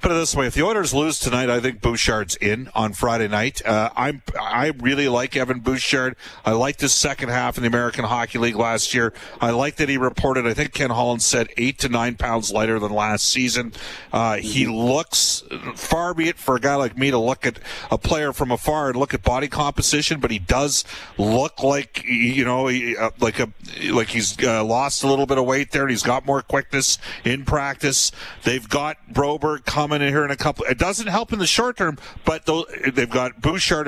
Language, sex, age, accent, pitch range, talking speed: English, male, 40-59, American, 125-155 Hz, 215 wpm